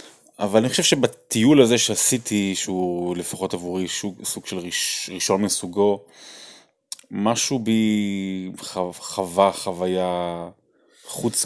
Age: 20-39